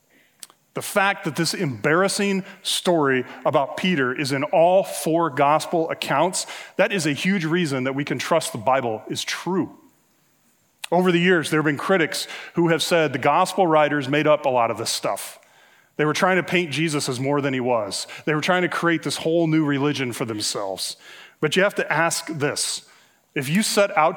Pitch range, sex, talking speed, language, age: 145-175 Hz, male, 195 wpm, English, 30-49